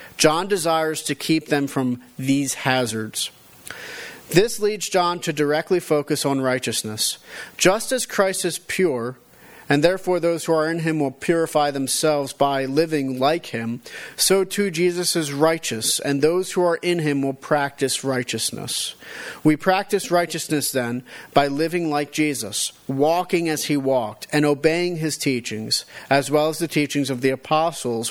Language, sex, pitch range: English, male, 130-170 Hz